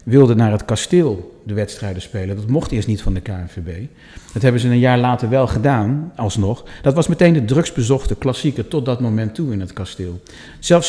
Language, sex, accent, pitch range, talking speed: Dutch, male, Dutch, 105-130 Hz, 205 wpm